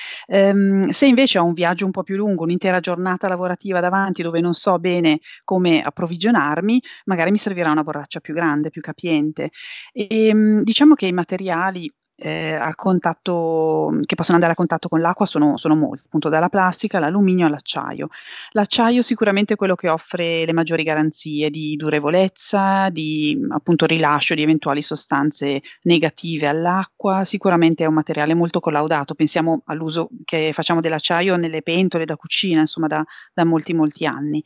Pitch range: 155-190 Hz